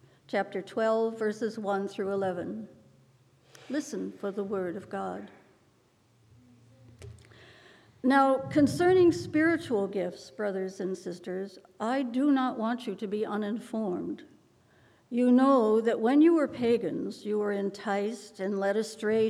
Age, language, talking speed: 60-79, English, 125 wpm